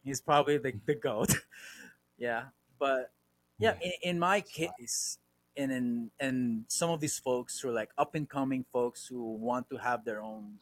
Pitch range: 115-150 Hz